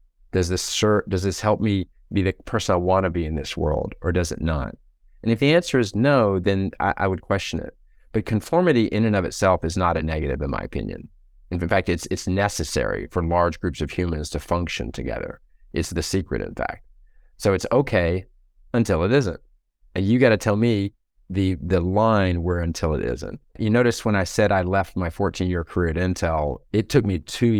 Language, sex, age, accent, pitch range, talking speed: English, male, 30-49, American, 80-95 Hz, 215 wpm